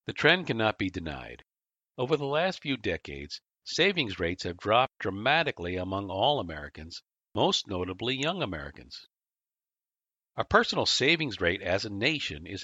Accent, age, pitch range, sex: American, 50-69, 90-145 Hz, male